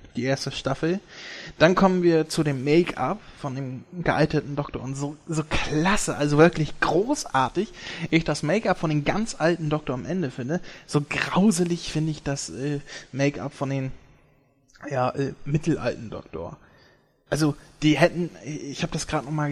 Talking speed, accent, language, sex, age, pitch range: 165 wpm, German, German, male, 20-39, 135-160 Hz